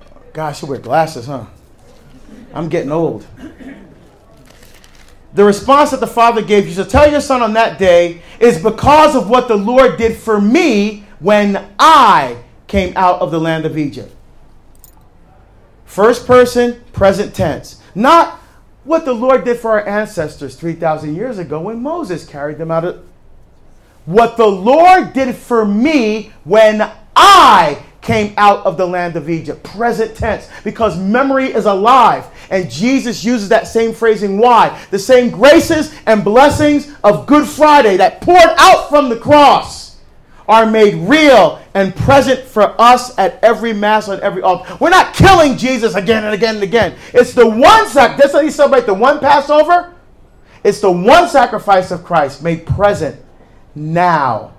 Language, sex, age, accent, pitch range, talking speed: English, male, 40-59, American, 180-255 Hz, 160 wpm